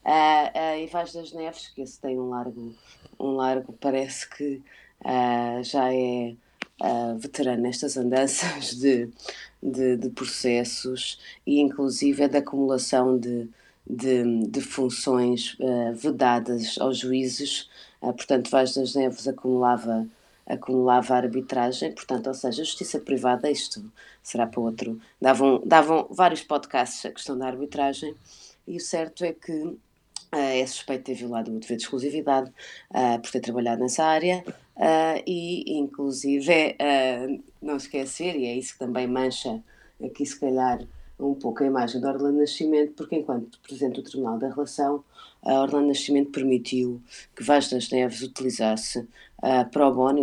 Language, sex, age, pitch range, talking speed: Portuguese, female, 20-39, 125-140 Hz, 150 wpm